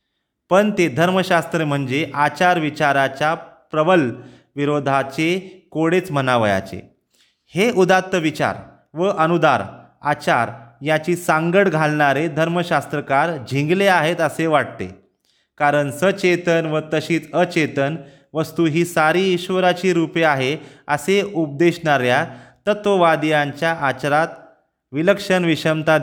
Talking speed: 90 wpm